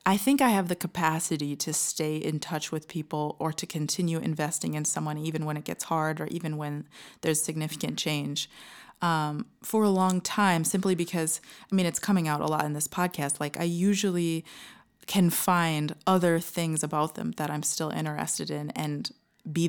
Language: English